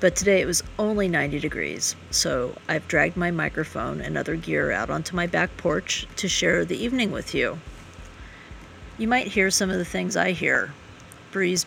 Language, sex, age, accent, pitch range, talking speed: English, female, 40-59, American, 145-180 Hz, 185 wpm